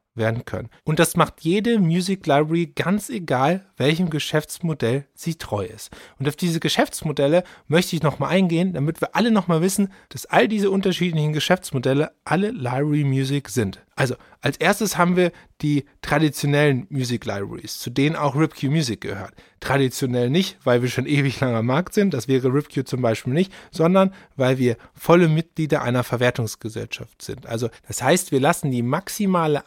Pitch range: 130-180 Hz